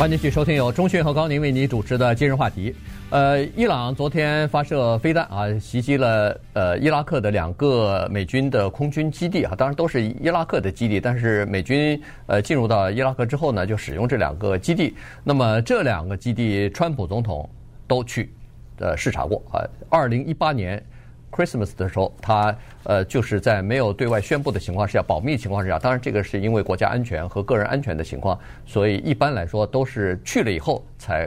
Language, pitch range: Chinese, 105-145 Hz